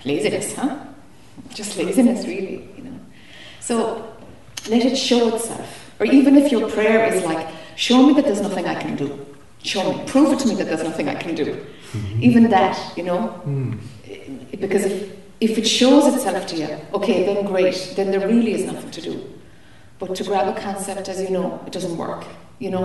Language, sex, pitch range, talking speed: English, female, 190-240 Hz, 195 wpm